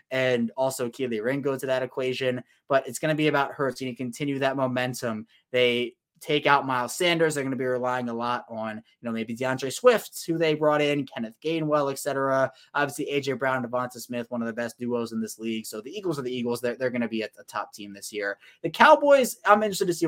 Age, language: 20-39, English